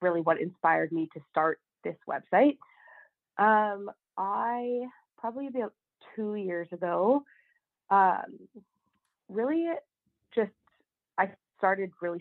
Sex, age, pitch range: female, 20-39, 170-225 Hz